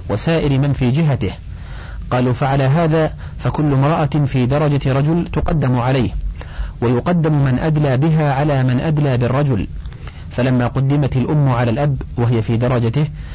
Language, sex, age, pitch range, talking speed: Arabic, male, 40-59, 120-150 Hz, 135 wpm